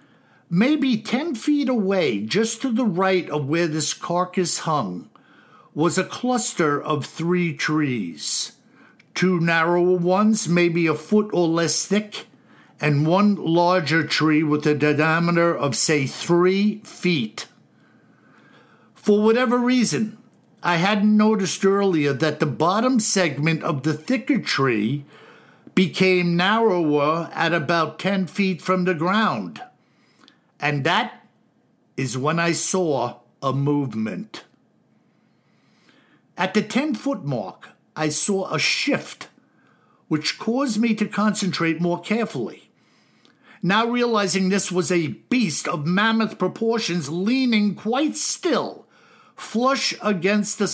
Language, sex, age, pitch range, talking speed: English, male, 60-79, 160-215 Hz, 120 wpm